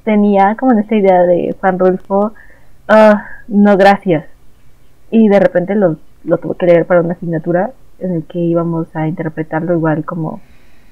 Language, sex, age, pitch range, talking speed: Spanish, female, 20-39, 180-205 Hz, 165 wpm